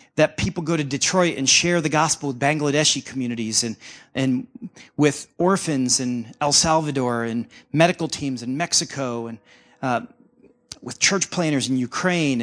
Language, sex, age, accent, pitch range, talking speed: English, male, 40-59, American, 135-180 Hz, 150 wpm